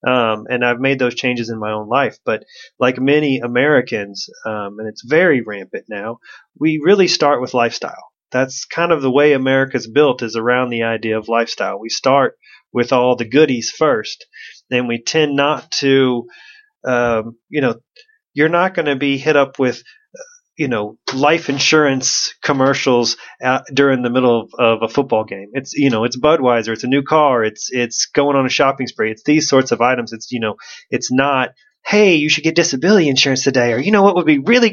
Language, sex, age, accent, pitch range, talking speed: English, male, 30-49, American, 120-155 Hz, 200 wpm